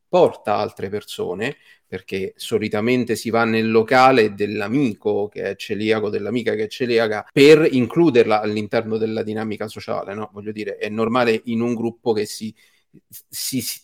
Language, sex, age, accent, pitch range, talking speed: Italian, male, 40-59, native, 120-165 Hz, 150 wpm